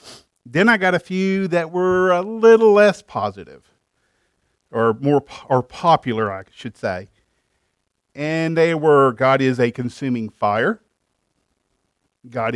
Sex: male